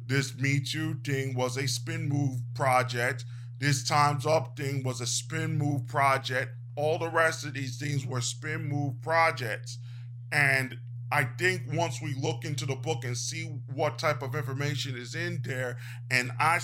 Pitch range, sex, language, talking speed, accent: 120-145 Hz, male, English, 175 wpm, American